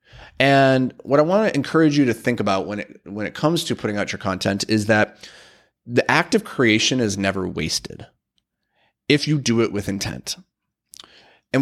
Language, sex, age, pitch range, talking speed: English, male, 30-49, 100-125 Hz, 185 wpm